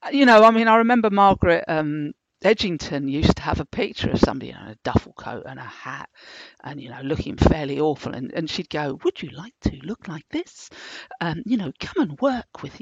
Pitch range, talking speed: 160-230 Hz, 225 wpm